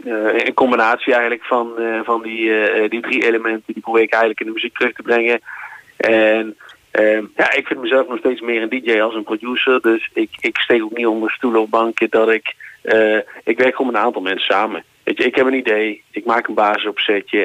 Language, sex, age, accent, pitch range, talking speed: Dutch, male, 30-49, Dutch, 110-125 Hz, 225 wpm